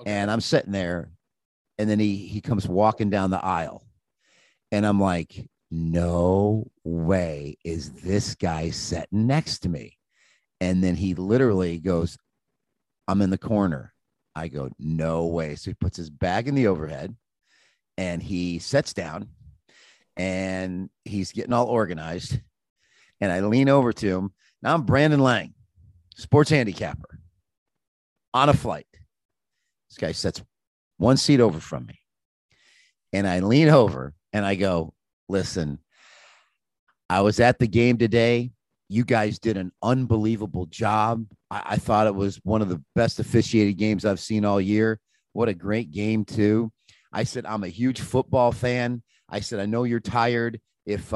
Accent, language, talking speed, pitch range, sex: American, English, 155 wpm, 95-115 Hz, male